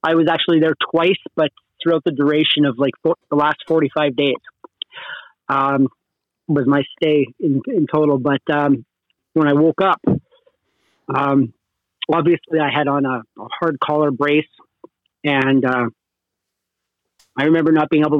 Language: English